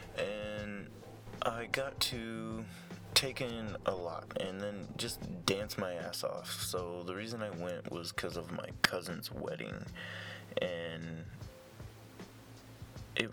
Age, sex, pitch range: 20-39, male, 95-120 Hz